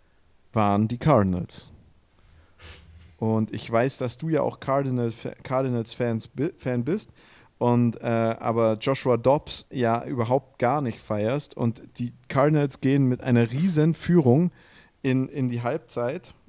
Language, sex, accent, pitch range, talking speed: German, male, German, 115-140 Hz, 125 wpm